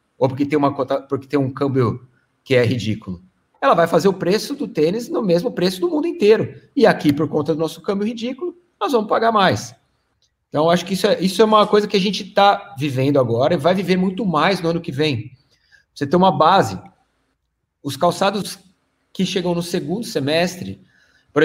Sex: male